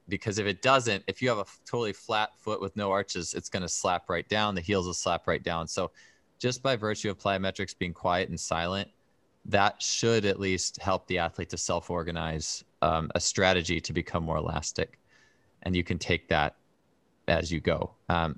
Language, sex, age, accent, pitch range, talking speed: Italian, male, 20-39, American, 90-110 Hz, 200 wpm